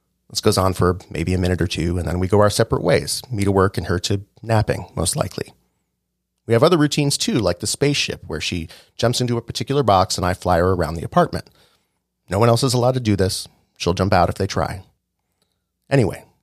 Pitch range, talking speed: 90-120 Hz, 225 wpm